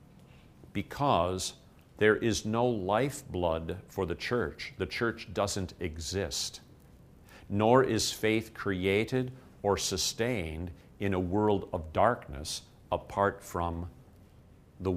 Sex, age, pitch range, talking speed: male, 50-69, 85-105 Hz, 105 wpm